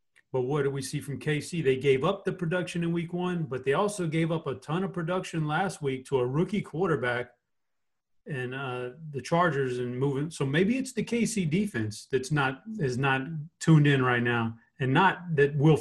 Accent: American